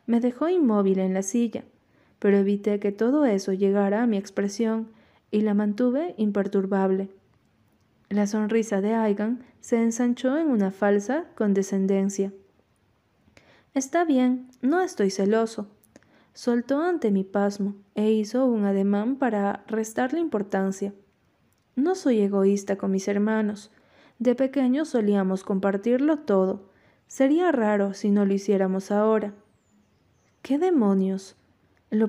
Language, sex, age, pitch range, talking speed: Spanish, female, 20-39, 200-245 Hz, 125 wpm